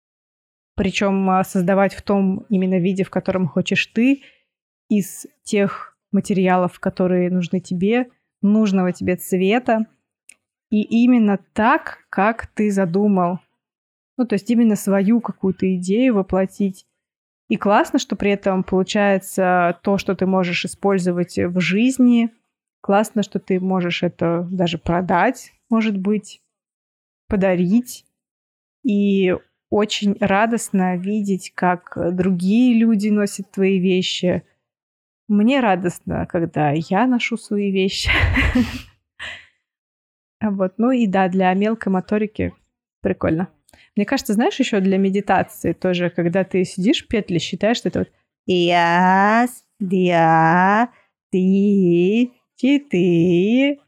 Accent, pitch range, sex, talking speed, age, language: native, 185-215 Hz, female, 110 wpm, 20-39, Russian